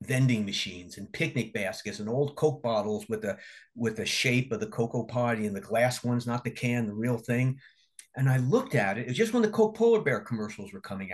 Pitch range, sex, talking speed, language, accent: 110-145 Hz, male, 235 wpm, English, American